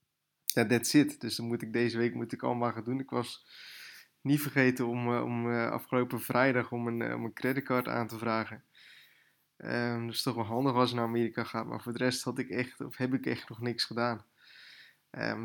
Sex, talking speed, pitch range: male, 215 wpm, 120-130 Hz